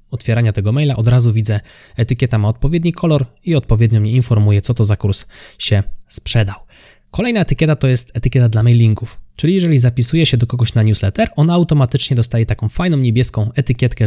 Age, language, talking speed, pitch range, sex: 20-39, Polish, 180 wpm, 110-130 Hz, male